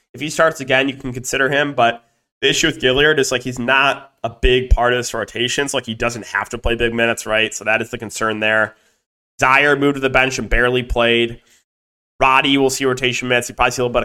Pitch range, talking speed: 120-145 Hz, 250 wpm